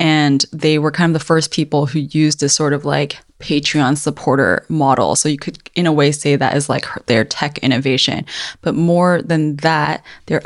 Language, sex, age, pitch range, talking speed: English, female, 20-39, 145-160 Hz, 200 wpm